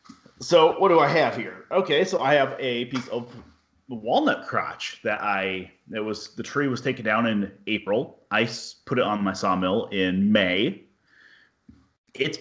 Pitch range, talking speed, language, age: 100-130 Hz, 170 wpm, English, 30-49